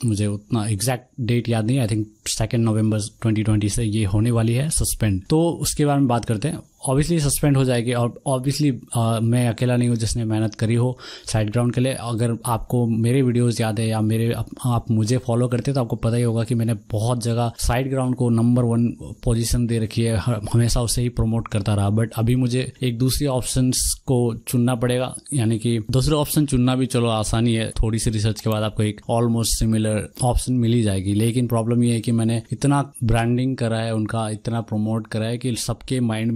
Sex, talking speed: male, 210 wpm